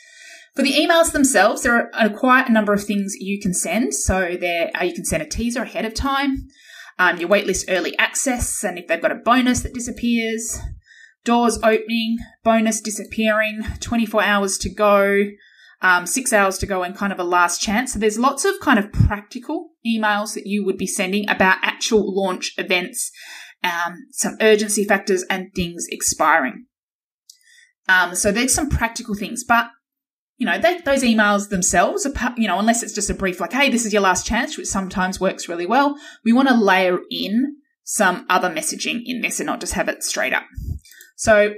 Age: 20-39